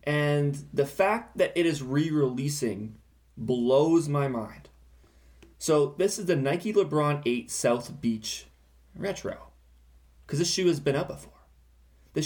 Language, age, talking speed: English, 20-39, 135 wpm